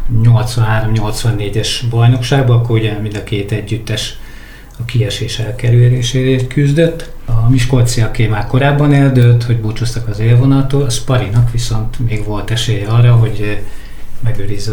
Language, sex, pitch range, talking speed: Hungarian, male, 110-125 Hz, 120 wpm